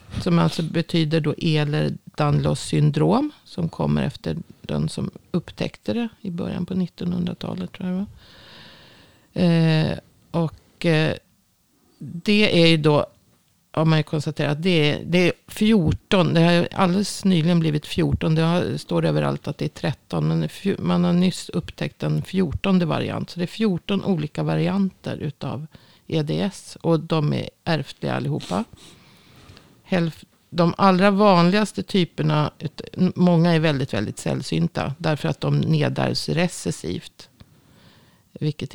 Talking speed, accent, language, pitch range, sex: 135 wpm, native, Swedish, 140-175 Hz, female